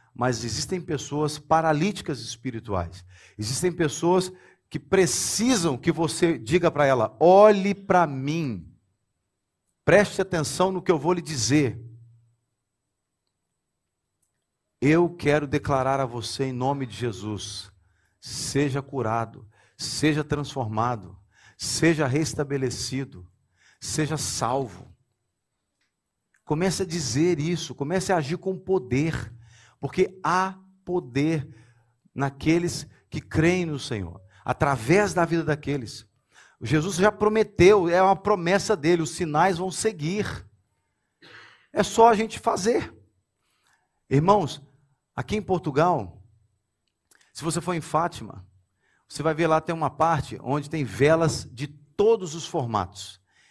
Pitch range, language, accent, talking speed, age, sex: 115-170 Hz, Portuguese, Brazilian, 115 wpm, 50-69, male